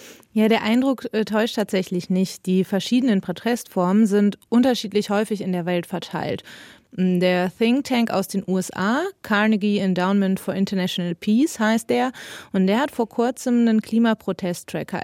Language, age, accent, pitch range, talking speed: German, 30-49, German, 185-225 Hz, 145 wpm